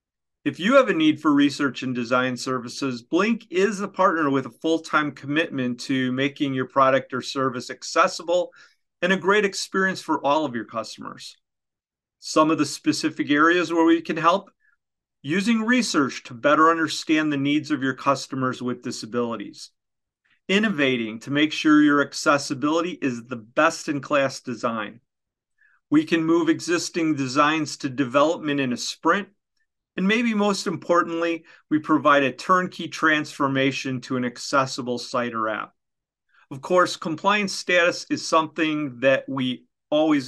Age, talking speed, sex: 40-59, 150 wpm, male